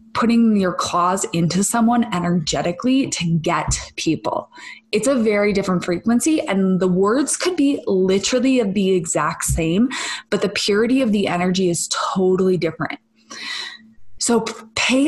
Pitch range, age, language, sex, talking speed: 175-230 Hz, 20-39, English, female, 140 wpm